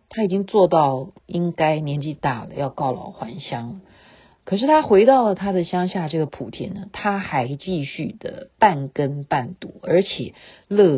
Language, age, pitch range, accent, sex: Chinese, 50-69, 150-195 Hz, native, female